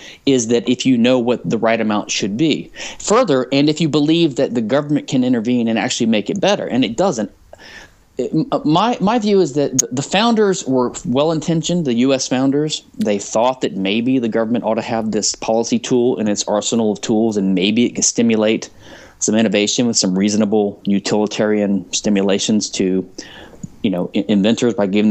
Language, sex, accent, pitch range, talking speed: English, male, American, 105-135 Hz, 185 wpm